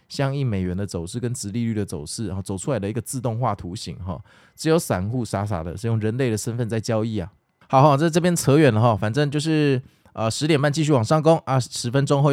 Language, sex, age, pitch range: Chinese, male, 20-39, 110-140 Hz